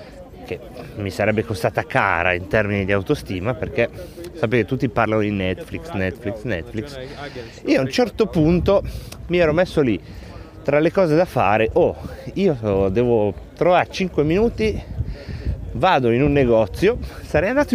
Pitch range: 100-155 Hz